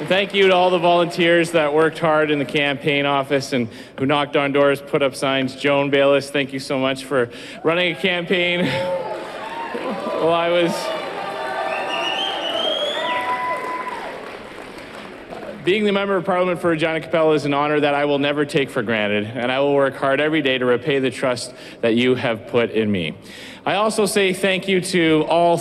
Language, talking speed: English, 180 wpm